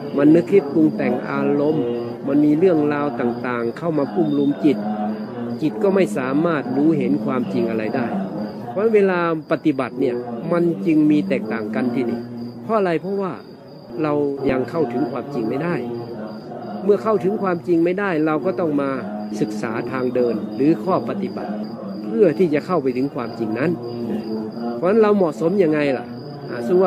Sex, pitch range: male, 120-170 Hz